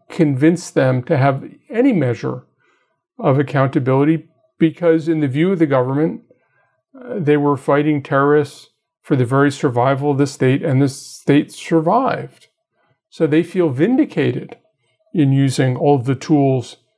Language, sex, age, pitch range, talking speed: English, male, 50-69, 140-175 Hz, 140 wpm